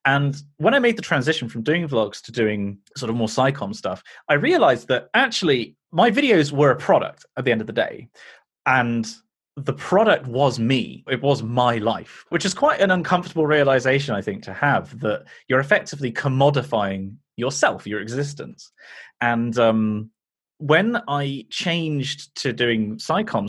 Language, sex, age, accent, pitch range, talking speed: English, male, 30-49, British, 110-145 Hz, 165 wpm